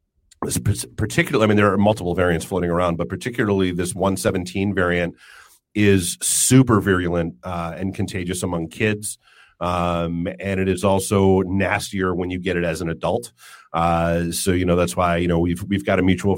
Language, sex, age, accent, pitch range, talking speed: English, male, 40-59, American, 85-105 Hz, 175 wpm